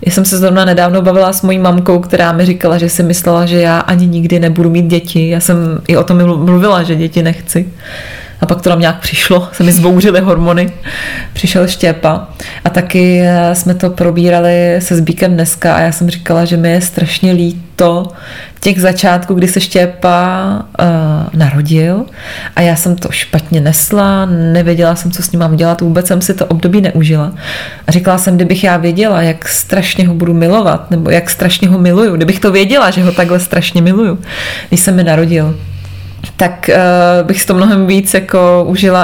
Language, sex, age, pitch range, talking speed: Czech, female, 20-39, 165-185 Hz, 190 wpm